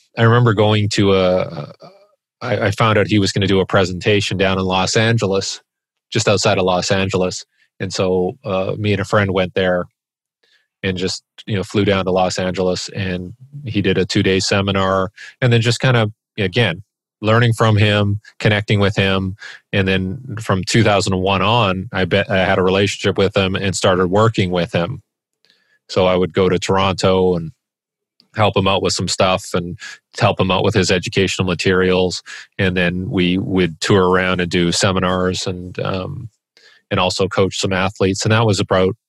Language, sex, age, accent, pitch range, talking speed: English, male, 30-49, American, 95-105 Hz, 185 wpm